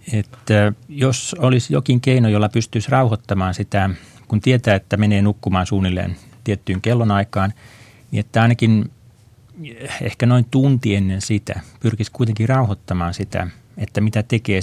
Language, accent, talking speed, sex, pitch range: Finnish, native, 125 wpm, male, 100-115 Hz